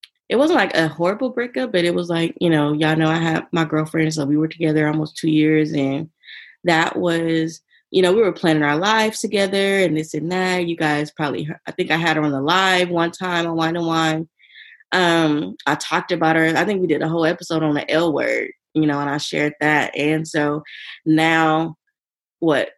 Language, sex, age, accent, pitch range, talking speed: English, female, 20-39, American, 155-185 Hz, 220 wpm